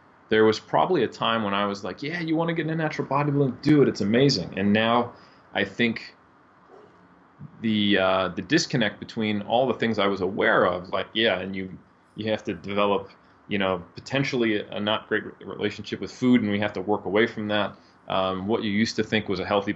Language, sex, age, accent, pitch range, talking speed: English, male, 30-49, American, 95-110 Hz, 220 wpm